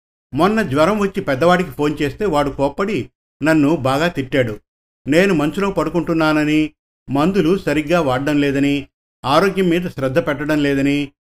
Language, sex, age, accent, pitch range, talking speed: Telugu, male, 50-69, native, 135-170 Hz, 115 wpm